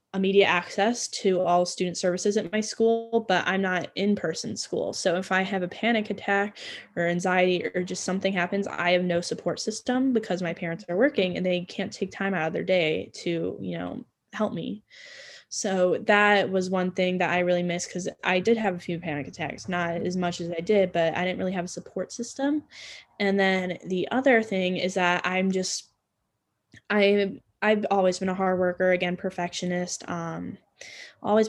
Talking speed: 195 wpm